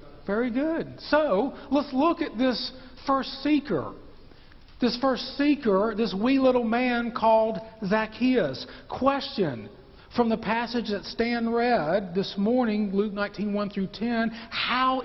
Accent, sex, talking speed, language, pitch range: American, male, 130 wpm, English, 175-255 Hz